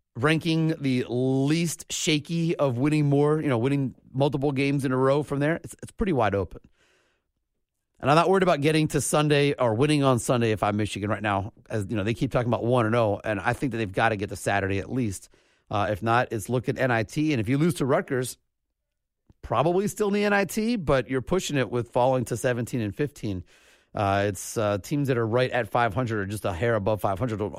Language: English